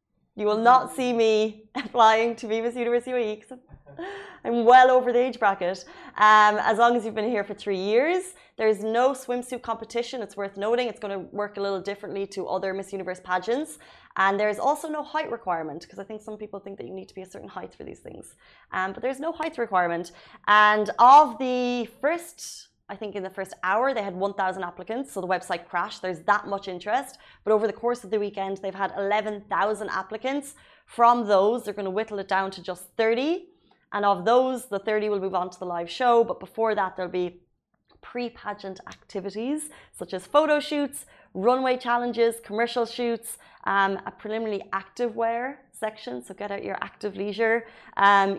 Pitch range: 195-240 Hz